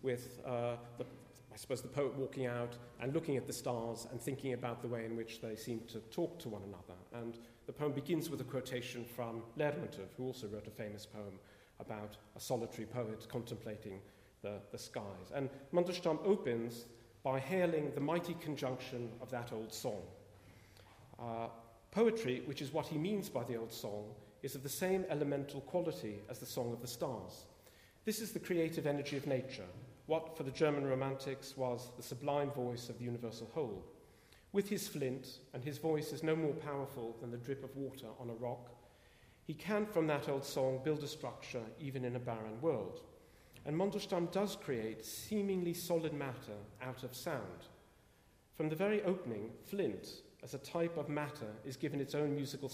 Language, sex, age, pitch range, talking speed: English, male, 40-59, 115-150 Hz, 185 wpm